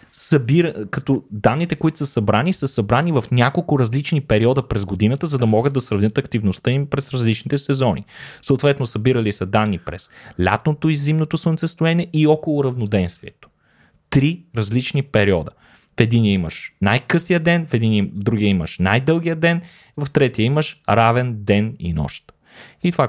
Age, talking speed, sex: 20-39, 155 wpm, male